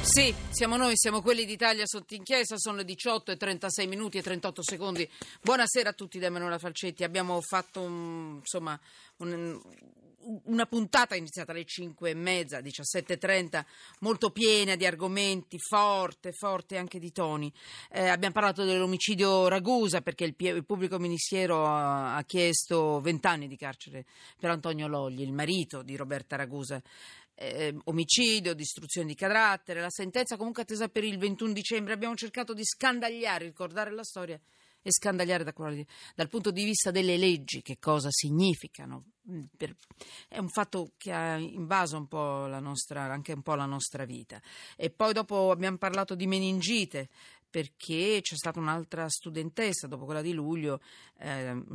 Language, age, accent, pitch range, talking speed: Italian, 40-59, native, 150-200 Hz, 150 wpm